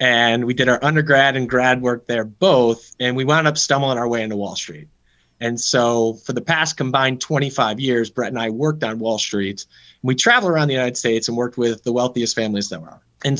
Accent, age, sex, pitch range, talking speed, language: American, 30-49, male, 115-150 Hz, 225 wpm, English